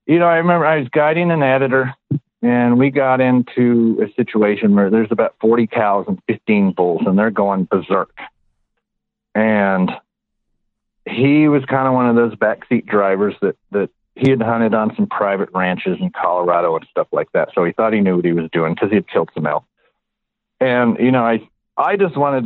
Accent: American